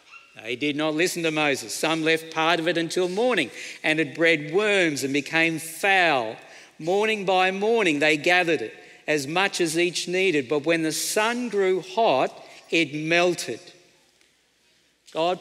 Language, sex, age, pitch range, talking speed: English, male, 50-69, 160-195 Hz, 155 wpm